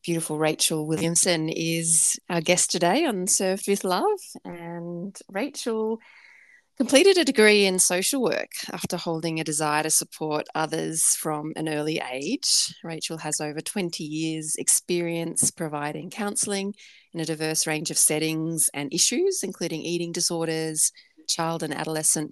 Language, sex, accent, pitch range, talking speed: English, female, Australian, 155-190 Hz, 140 wpm